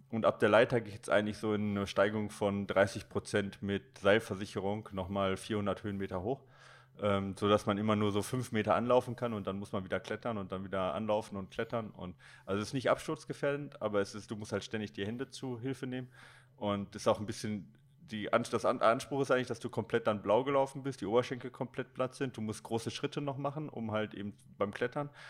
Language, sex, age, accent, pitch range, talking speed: German, male, 30-49, German, 100-120 Hz, 220 wpm